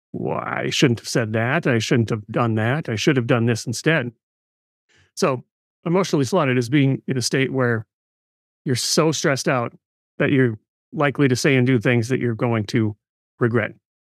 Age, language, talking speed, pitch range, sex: 30-49, English, 185 wpm, 115-145 Hz, male